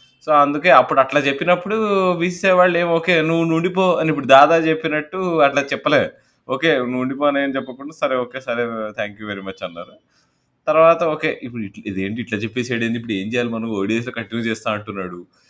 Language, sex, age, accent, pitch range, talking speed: Telugu, male, 20-39, native, 100-145 Hz, 170 wpm